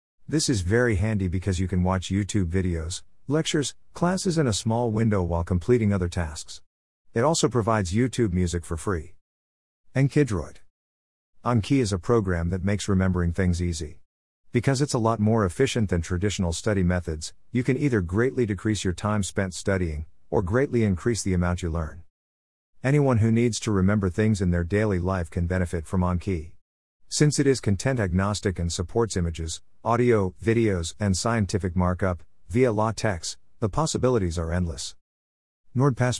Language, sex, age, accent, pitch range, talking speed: English, male, 50-69, American, 90-120 Hz, 160 wpm